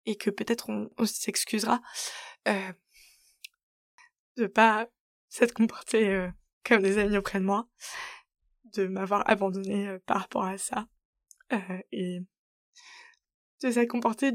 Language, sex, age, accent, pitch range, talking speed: French, female, 20-39, French, 195-230 Hz, 130 wpm